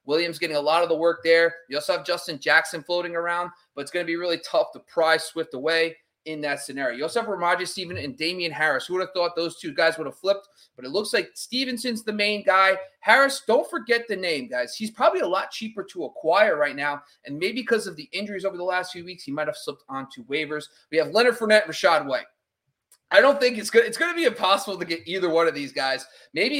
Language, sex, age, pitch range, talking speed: English, male, 30-49, 155-195 Hz, 255 wpm